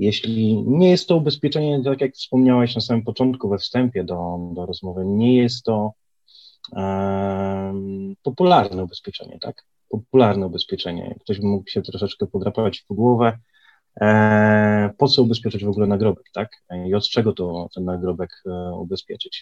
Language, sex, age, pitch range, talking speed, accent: Polish, male, 30-49, 95-115 Hz, 150 wpm, native